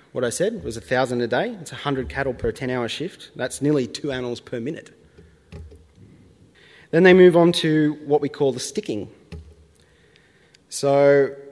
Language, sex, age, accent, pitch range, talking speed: English, male, 30-49, Australian, 120-150 Hz, 160 wpm